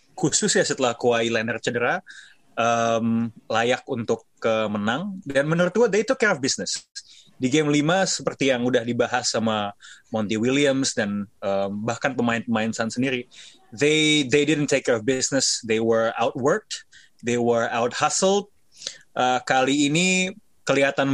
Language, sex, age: Indonesian, male, 20-39